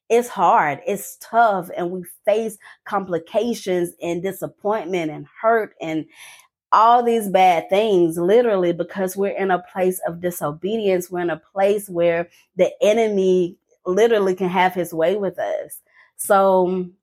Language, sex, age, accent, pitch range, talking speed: English, female, 20-39, American, 175-215 Hz, 140 wpm